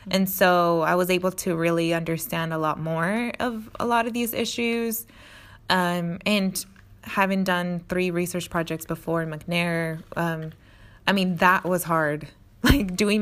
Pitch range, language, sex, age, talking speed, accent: 160-185 Hz, English, female, 20-39, 160 wpm, American